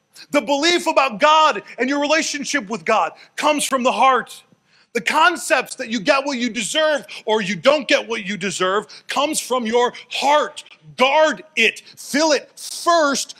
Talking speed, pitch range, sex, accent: 165 wpm, 195-265 Hz, male, American